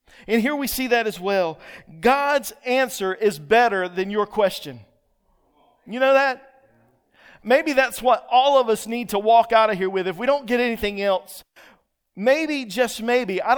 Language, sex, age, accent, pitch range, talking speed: English, male, 40-59, American, 195-265 Hz, 175 wpm